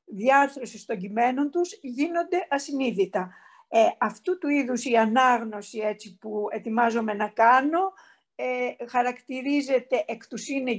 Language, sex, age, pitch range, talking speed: Greek, female, 50-69, 230-300 Hz, 115 wpm